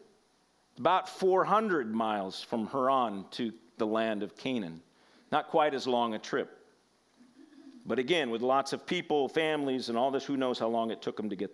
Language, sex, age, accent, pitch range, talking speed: English, male, 50-69, American, 150-240 Hz, 180 wpm